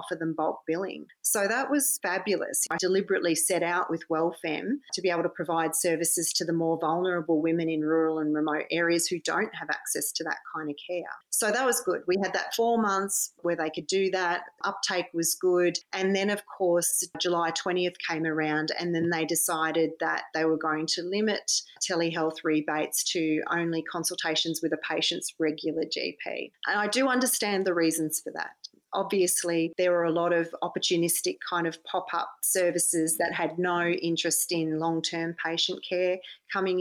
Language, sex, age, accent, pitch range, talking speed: English, female, 40-59, Australian, 165-180 Hz, 185 wpm